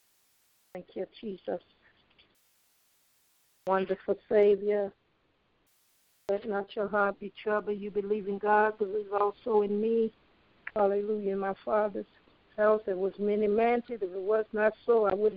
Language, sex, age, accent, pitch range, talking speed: English, female, 60-79, American, 195-220 Hz, 145 wpm